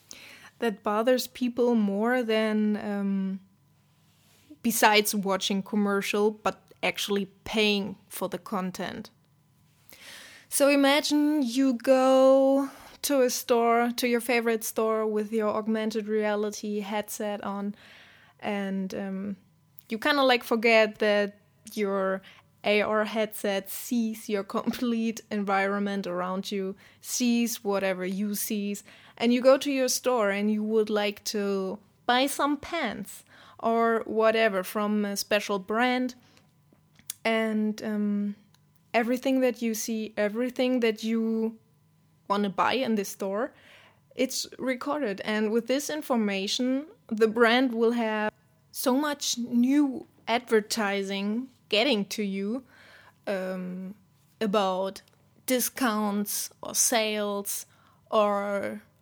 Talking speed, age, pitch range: 115 wpm, 20-39, 200-240 Hz